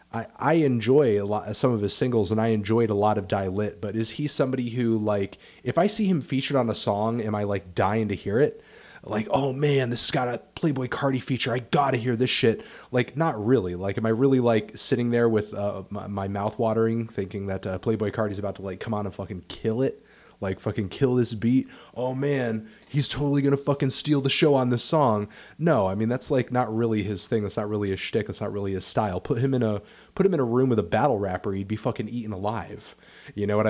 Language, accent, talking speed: English, American, 250 wpm